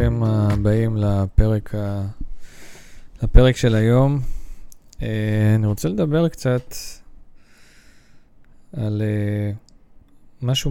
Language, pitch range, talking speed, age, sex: Hebrew, 100-120 Hz, 60 wpm, 20-39, male